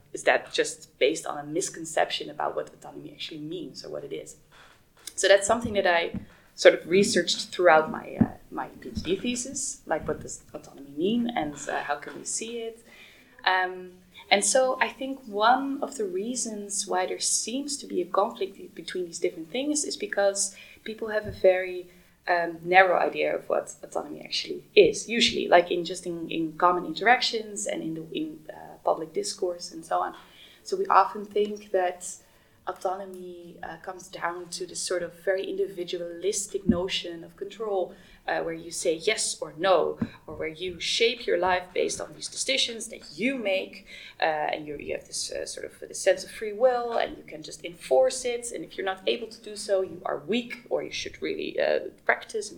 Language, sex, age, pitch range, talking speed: English, female, 20-39, 185-265 Hz, 195 wpm